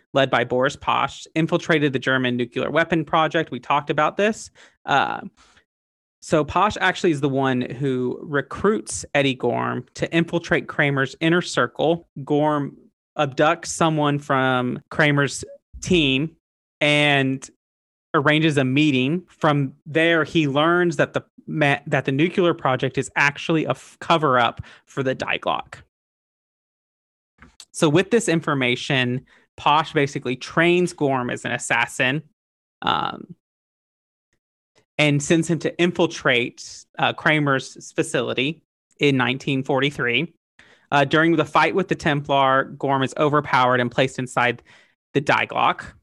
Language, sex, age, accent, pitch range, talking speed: English, male, 30-49, American, 135-165 Hz, 125 wpm